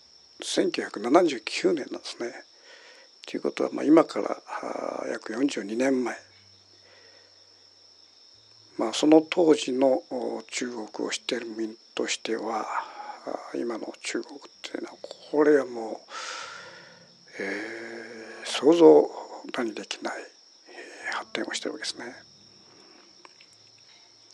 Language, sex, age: Japanese, male, 60-79